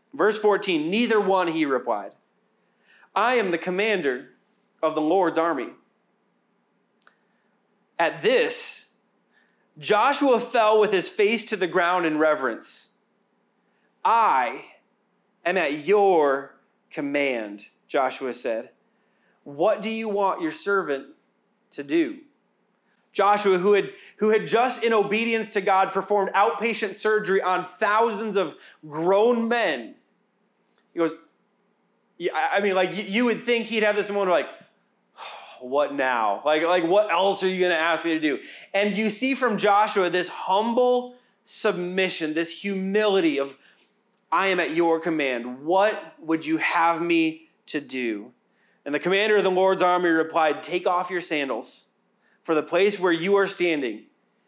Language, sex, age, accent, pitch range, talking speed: English, male, 30-49, American, 170-220 Hz, 145 wpm